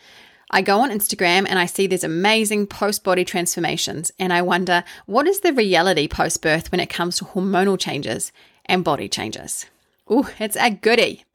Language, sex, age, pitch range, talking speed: English, female, 30-49, 170-215 Hz, 170 wpm